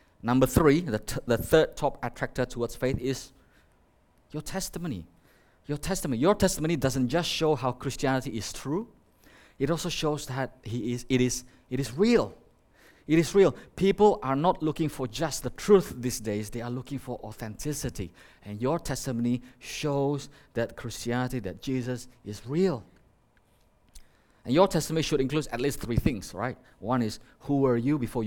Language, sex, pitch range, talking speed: English, male, 115-145 Hz, 170 wpm